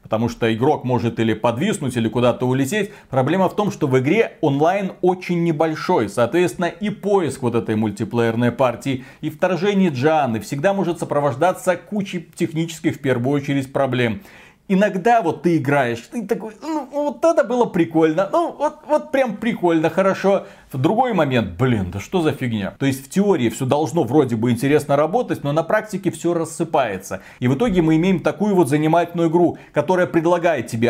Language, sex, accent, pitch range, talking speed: Russian, male, native, 130-190 Hz, 170 wpm